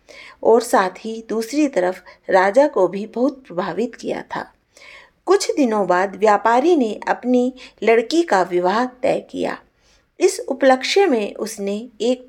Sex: female